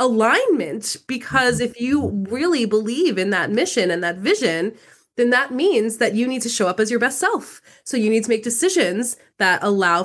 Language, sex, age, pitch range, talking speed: English, female, 20-39, 195-265 Hz, 195 wpm